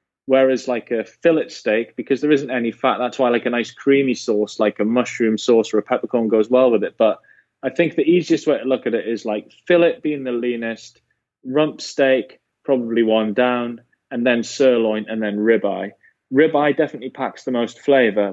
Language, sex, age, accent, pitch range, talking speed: English, male, 20-39, British, 115-155 Hz, 205 wpm